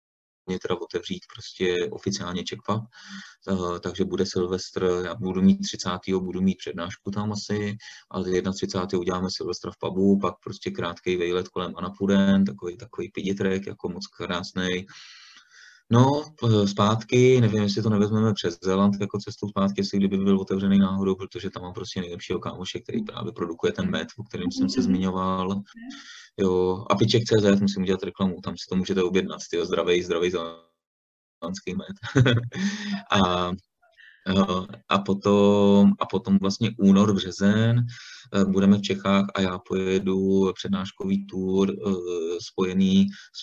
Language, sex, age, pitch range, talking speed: Czech, male, 30-49, 95-110 Hz, 140 wpm